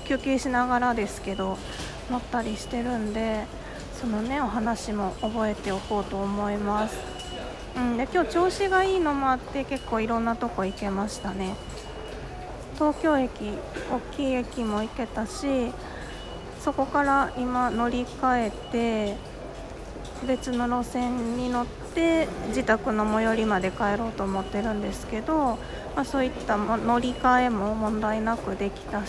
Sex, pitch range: female, 220-265 Hz